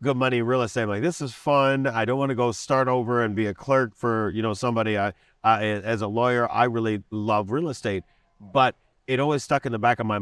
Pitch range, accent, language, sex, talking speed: 105-130 Hz, American, English, male, 255 wpm